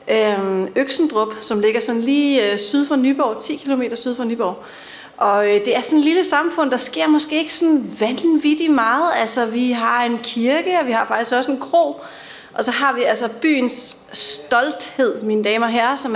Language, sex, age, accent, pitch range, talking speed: Danish, female, 30-49, native, 220-275 Hz, 190 wpm